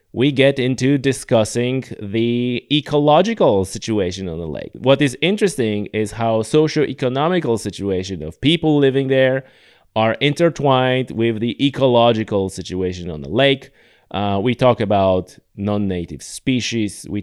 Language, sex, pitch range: English, male, 105-135 Hz